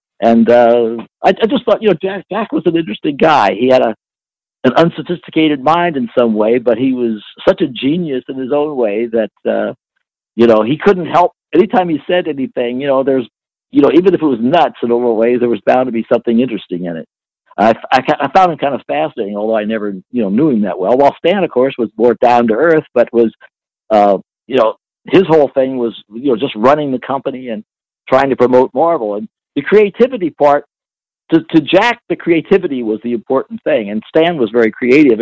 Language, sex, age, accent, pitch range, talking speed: English, male, 60-79, American, 115-160 Hz, 220 wpm